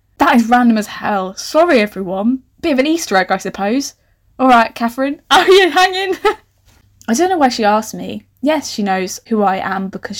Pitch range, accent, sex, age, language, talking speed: 200-280 Hz, British, female, 10-29, English, 205 wpm